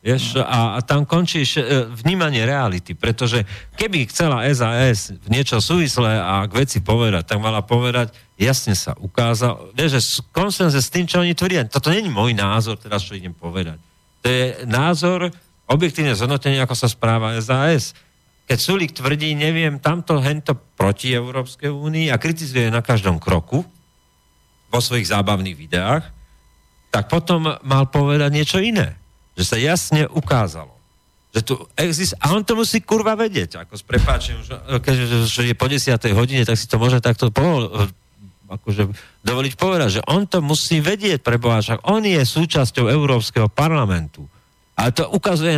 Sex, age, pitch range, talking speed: male, 40-59, 110-150 Hz, 150 wpm